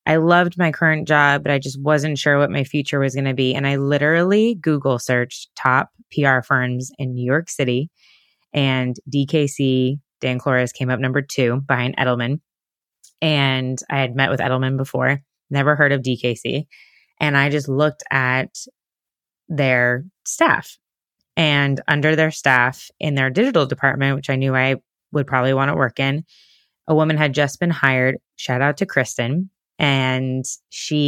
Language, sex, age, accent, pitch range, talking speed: English, female, 20-39, American, 130-155 Hz, 170 wpm